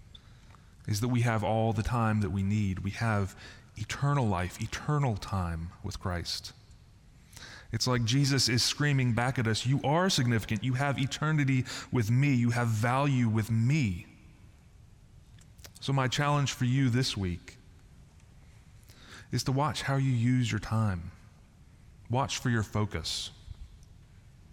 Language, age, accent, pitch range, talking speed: English, 30-49, American, 100-120 Hz, 140 wpm